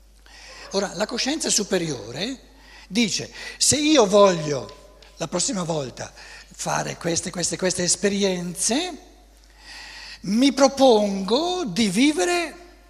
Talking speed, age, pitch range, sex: 95 wpm, 60-79, 145-240 Hz, male